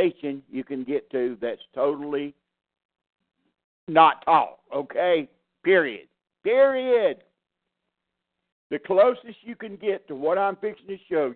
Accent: American